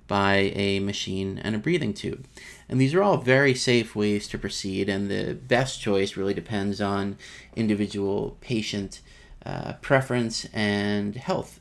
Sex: male